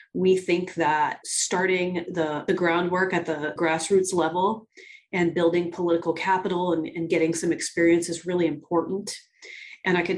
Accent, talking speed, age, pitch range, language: American, 155 wpm, 30-49, 160-185 Hz, English